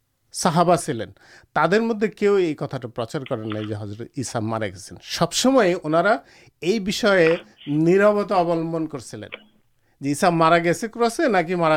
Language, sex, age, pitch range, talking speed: Urdu, male, 50-69, 145-190 Hz, 115 wpm